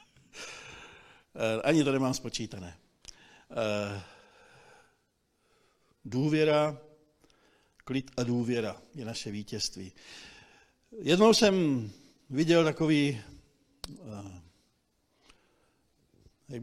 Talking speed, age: 60 wpm, 60-79